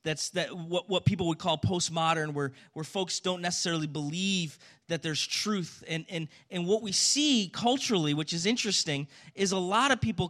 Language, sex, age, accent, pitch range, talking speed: English, male, 30-49, American, 165-225 Hz, 185 wpm